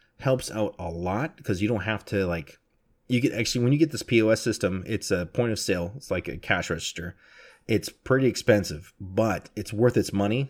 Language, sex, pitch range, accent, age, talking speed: English, male, 95-110 Hz, American, 30-49, 210 wpm